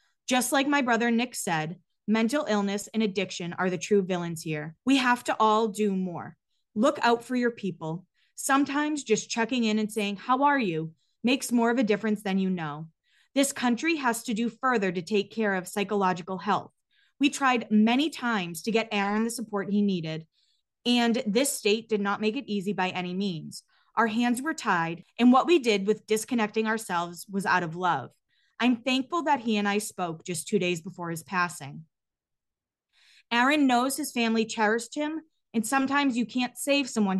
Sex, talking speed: female, 190 wpm